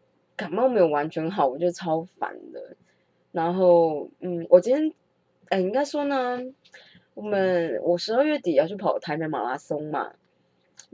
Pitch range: 160-195 Hz